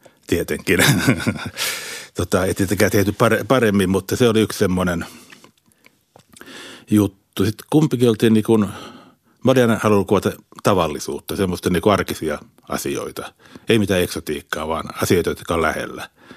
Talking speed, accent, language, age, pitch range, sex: 110 wpm, native, Finnish, 60-79, 90-110 Hz, male